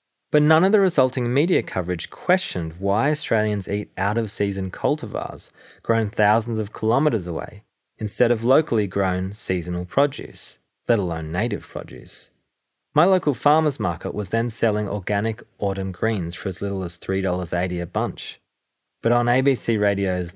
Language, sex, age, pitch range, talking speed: English, male, 20-39, 90-120 Hz, 145 wpm